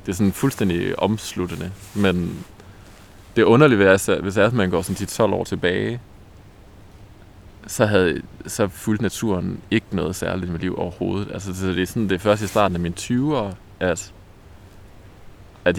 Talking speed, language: 150 wpm, Danish